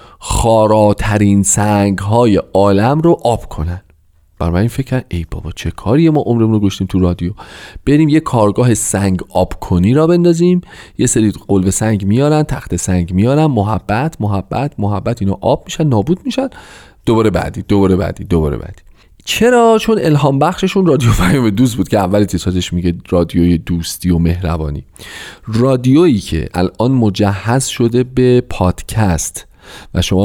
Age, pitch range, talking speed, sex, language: 40-59, 90-130 Hz, 155 wpm, male, Persian